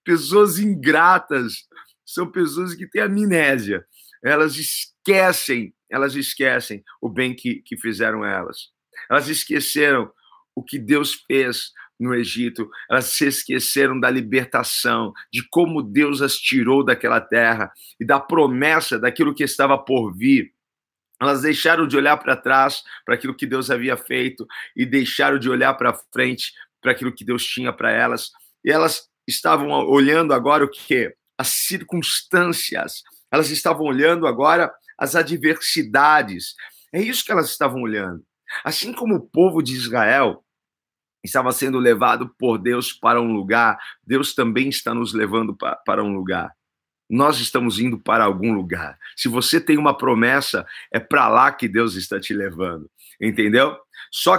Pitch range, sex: 125-175 Hz, male